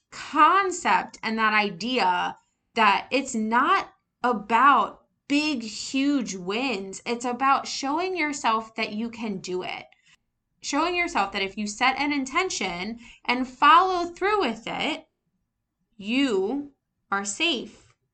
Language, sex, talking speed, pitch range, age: English, female, 120 wpm, 205-275 Hz, 20-39